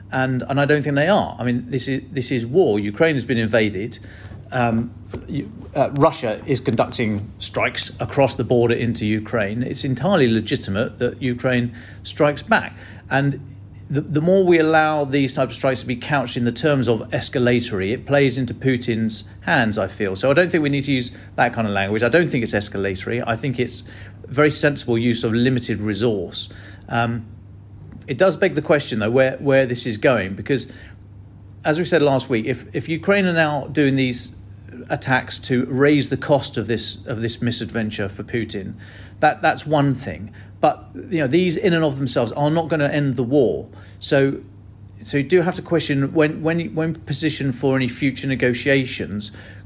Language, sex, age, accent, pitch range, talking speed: English, male, 40-59, British, 105-140 Hz, 190 wpm